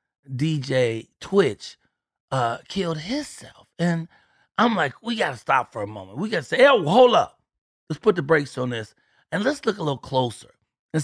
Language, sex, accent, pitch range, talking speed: English, male, American, 120-165 Hz, 190 wpm